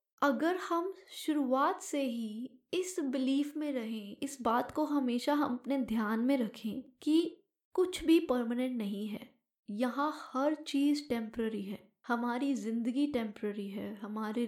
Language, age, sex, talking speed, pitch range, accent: Hindi, 10-29, female, 140 wpm, 220-300 Hz, native